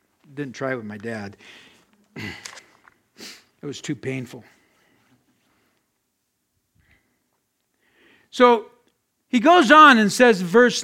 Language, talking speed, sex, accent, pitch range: English, 95 wpm, male, American, 165-250 Hz